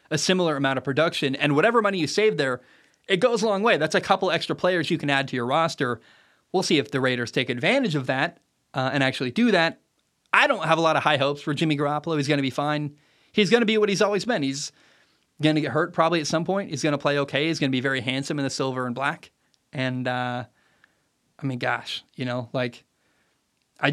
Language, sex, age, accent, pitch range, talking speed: English, male, 20-39, American, 135-165 Hz, 250 wpm